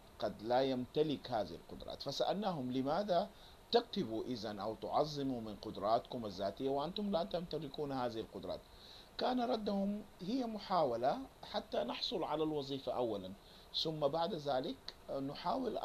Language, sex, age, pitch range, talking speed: Arabic, male, 50-69, 110-170 Hz, 120 wpm